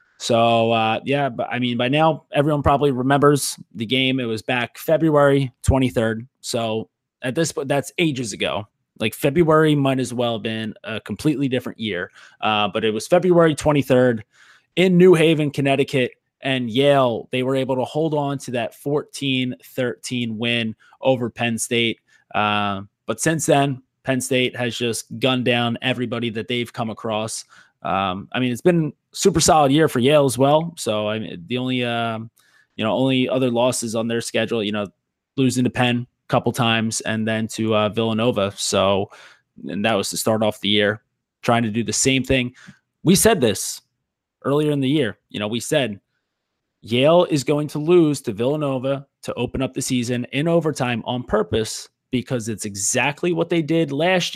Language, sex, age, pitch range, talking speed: English, male, 20-39, 115-140 Hz, 180 wpm